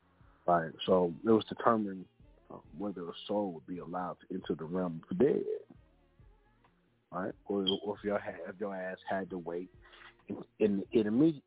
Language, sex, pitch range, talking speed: English, male, 95-110 Hz, 180 wpm